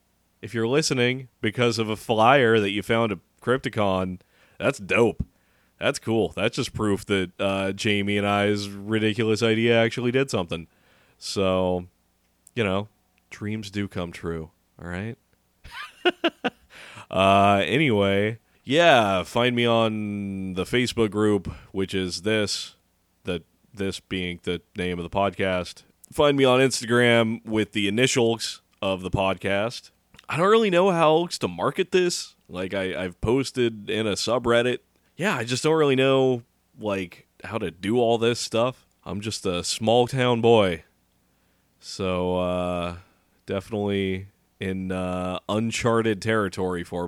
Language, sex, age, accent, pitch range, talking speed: English, male, 30-49, American, 90-115 Hz, 135 wpm